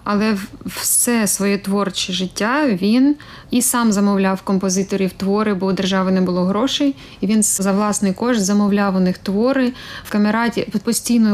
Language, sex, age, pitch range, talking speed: Ukrainian, female, 20-39, 195-220 Hz, 155 wpm